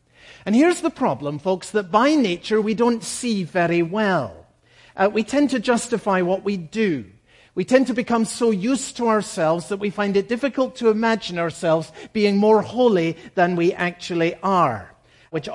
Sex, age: male, 50-69